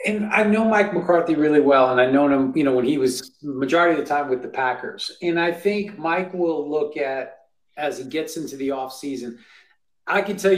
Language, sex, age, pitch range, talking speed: English, male, 40-59, 135-175 Hz, 220 wpm